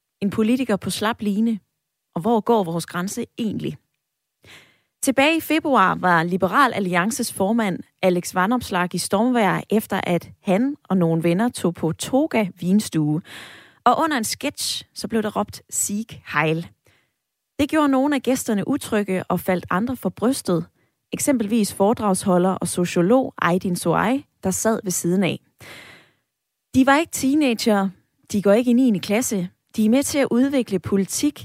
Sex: female